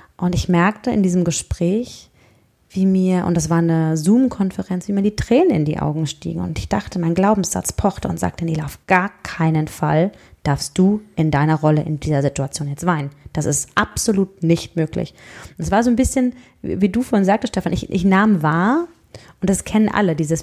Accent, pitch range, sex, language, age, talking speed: German, 170-225 Hz, female, German, 30-49, 200 wpm